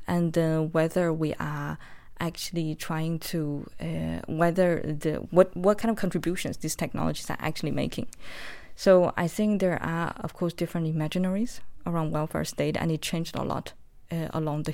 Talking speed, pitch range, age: 165 wpm, 150-175 Hz, 20-39